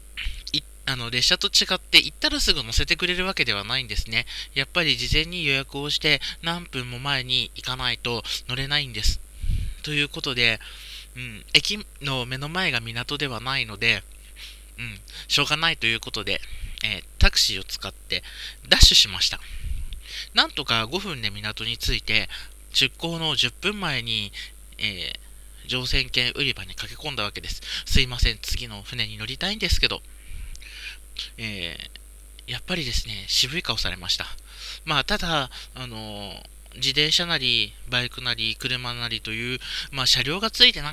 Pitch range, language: 100-150 Hz, Japanese